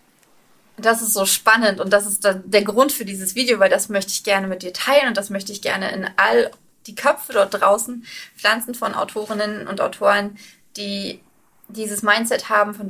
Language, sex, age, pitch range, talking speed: German, female, 20-39, 200-245 Hz, 190 wpm